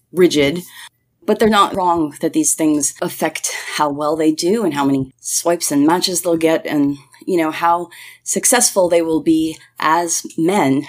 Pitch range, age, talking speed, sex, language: 145-190 Hz, 30-49, 170 wpm, female, English